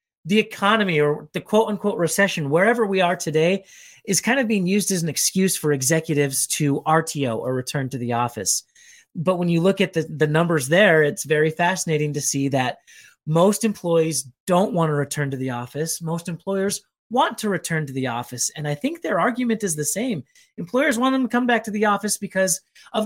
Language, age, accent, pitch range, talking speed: English, 30-49, American, 145-195 Hz, 205 wpm